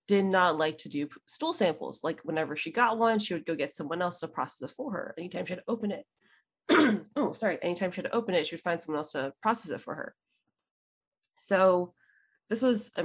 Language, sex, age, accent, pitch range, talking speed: English, female, 20-39, American, 175-235 Hz, 235 wpm